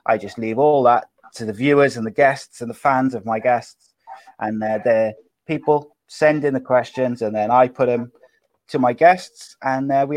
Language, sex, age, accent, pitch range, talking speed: English, male, 30-49, British, 120-140 Hz, 210 wpm